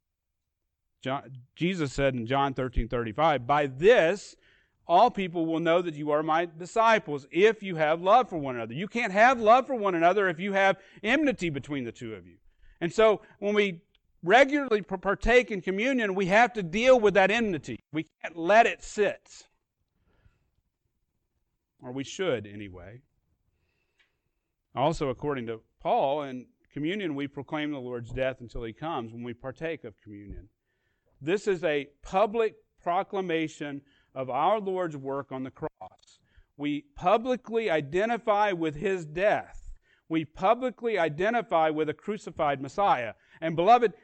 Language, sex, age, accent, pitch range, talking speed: English, male, 40-59, American, 135-200 Hz, 150 wpm